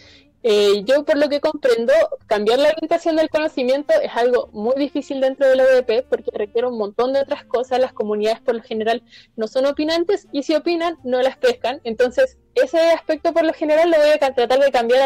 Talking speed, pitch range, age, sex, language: 205 wpm, 245-315 Hz, 20-39, female, Spanish